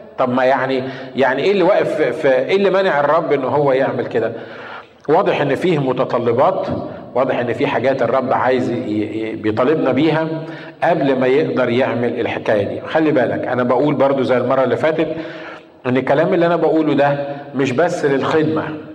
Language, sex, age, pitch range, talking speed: Arabic, male, 50-69, 135-170 Hz, 160 wpm